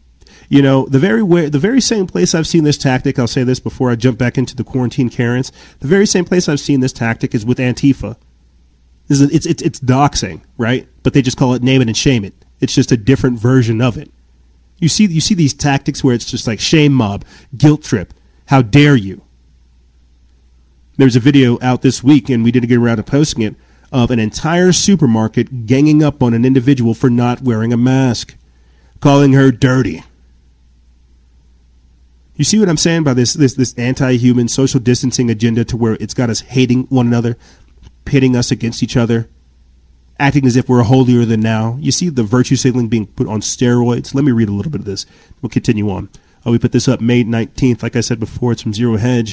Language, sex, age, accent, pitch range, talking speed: English, male, 30-49, American, 110-135 Hz, 210 wpm